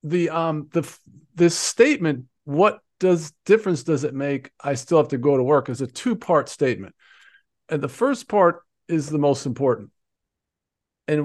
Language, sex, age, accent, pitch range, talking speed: English, male, 50-69, American, 135-190 Hz, 170 wpm